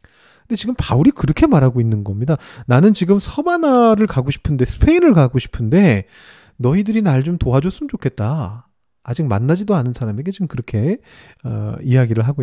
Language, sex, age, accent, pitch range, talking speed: English, male, 30-49, Korean, 125-190 Hz, 135 wpm